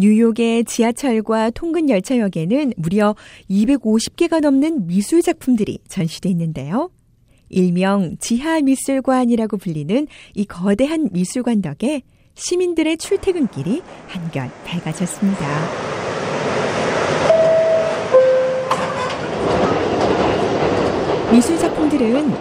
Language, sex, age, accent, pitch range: Korean, female, 40-59, native, 190-280 Hz